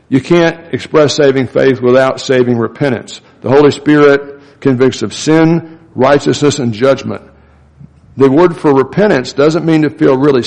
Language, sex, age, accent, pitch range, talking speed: English, male, 60-79, American, 120-150 Hz, 150 wpm